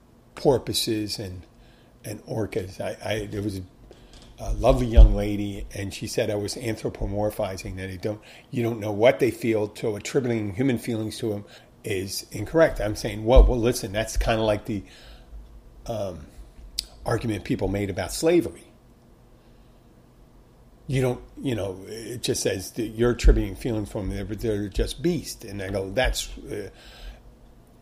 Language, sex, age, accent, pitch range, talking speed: English, male, 40-59, American, 100-120 Hz, 155 wpm